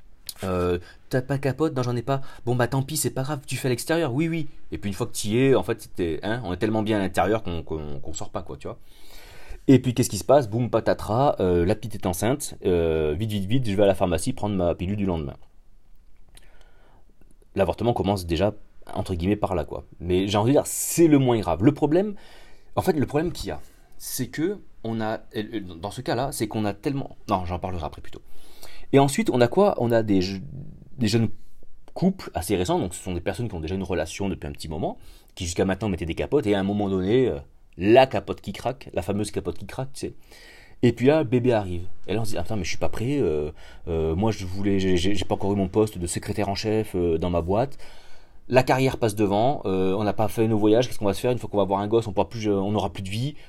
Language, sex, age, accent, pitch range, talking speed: French, male, 30-49, French, 90-125 Hz, 260 wpm